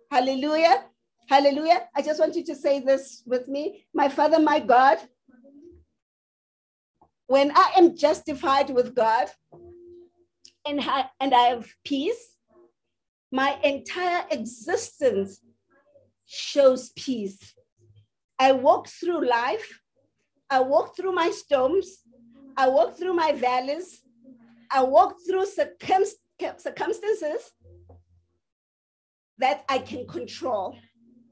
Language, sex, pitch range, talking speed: English, female, 250-330 Hz, 100 wpm